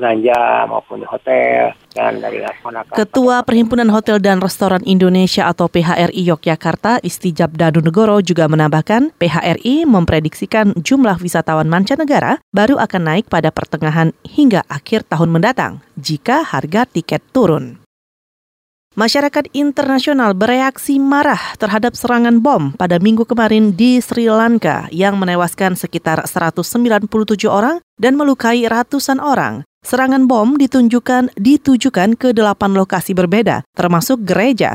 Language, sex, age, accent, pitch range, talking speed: Indonesian, female, 30-49, native, 175-240 Hz, 110 wpm